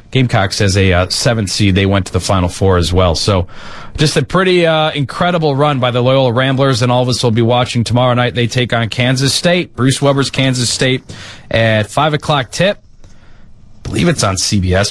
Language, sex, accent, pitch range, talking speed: English, male, American, 110-155 Hz, 210 wpm